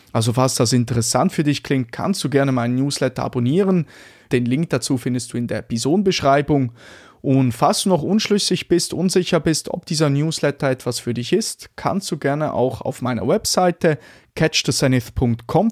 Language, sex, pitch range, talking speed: German, male, 125-160 Hz, 170 wpm